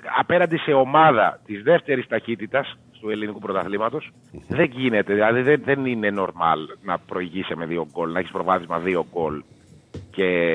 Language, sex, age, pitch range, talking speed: Greek, male, 30-49, 105-150 Hz, 150 wpm